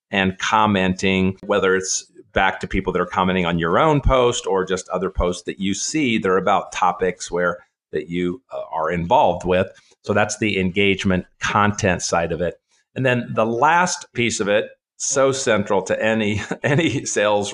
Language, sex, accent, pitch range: English, male, American, 95-125 Hz